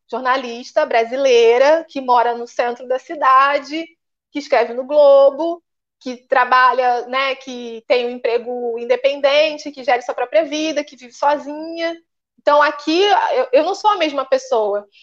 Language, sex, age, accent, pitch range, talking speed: Portuguese, female, 20-39, Brazilian, 255-315 Hz, 145 wpm